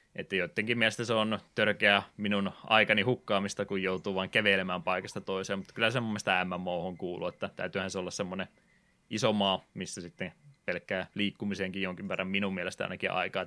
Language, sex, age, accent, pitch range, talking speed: Finnish, male, 20-39, native, 95-105 Hz, 165 wpm